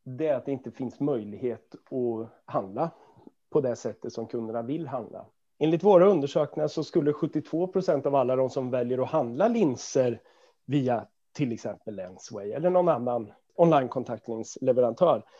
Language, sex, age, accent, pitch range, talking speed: Swedish, male, 30-49, native, 130-165 Hz, 150 wpm